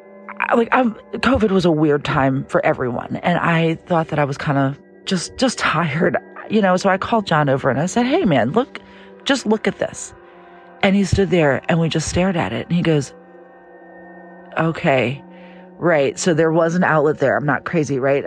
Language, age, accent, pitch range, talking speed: English, 40-59, American, 150-205 Hz, 205 wpm